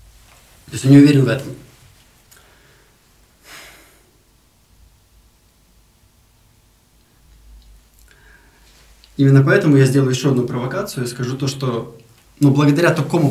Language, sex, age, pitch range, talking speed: Russian, male, 20-39, 125-150 Hz, 95 wpm